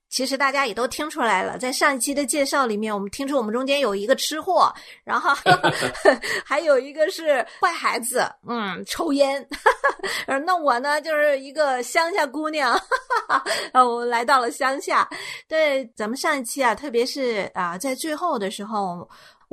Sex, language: female, Chinese